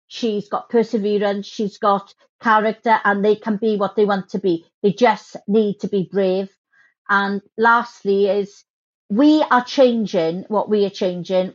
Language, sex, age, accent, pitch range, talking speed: English, female, 50-69, British, 190-230 Hz, 160 wpm